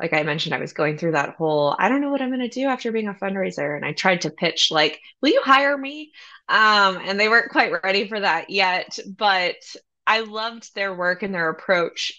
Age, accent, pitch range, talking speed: 20-39, American, 170-215 Hz, 235 wpm